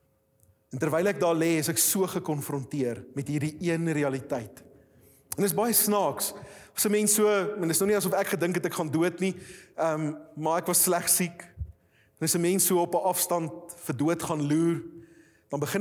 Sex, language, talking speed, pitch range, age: male, English, 200 wpm, 145-205 Hz, 30-49